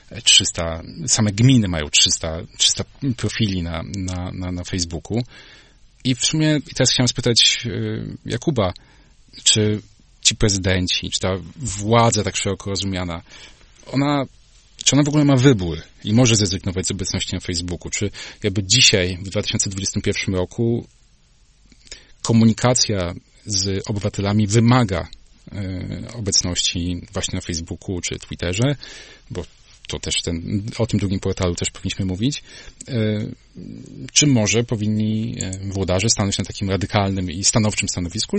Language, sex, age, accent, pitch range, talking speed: Polish, male, 40-59, native, 90-120 Hz, 125 wpm